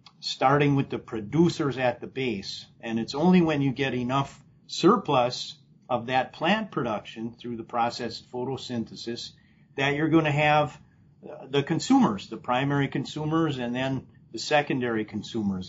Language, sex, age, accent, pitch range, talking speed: English, male, 50-69, American, 120-150 Hz, 150 wpm